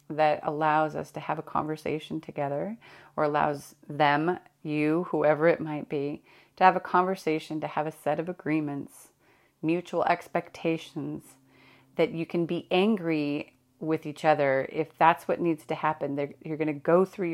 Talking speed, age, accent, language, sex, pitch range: 165 wpm, 30-49, American, English, female, 140-165 Hz